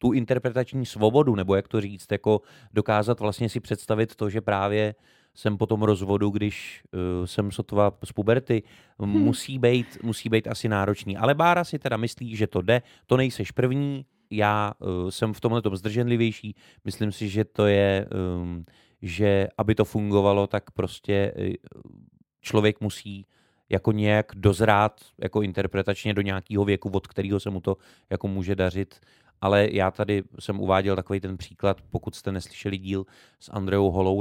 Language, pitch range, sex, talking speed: Czech, 100-110 Hz, male, 160 wpm